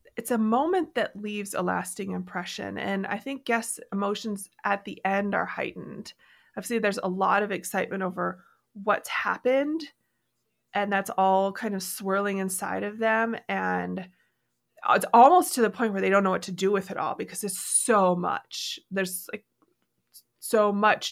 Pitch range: 185-225 Hz